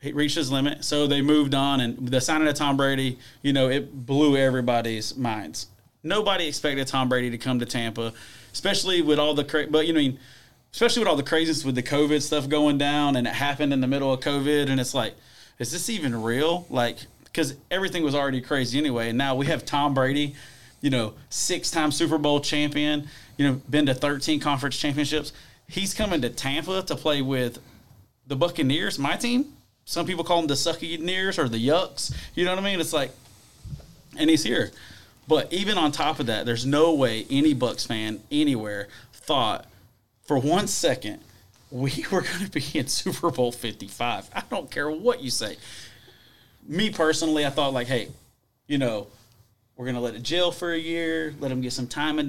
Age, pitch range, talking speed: 30-49, 125-155 Hz, 195 wpm